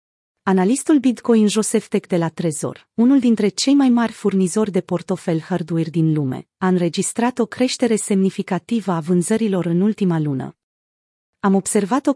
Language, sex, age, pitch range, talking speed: Romanian, female, 30-49, 175-225 Hz, 155 wpm